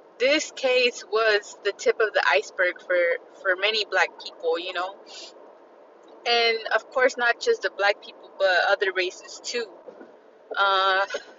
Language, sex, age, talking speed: English, female, 20-39, 150 wpm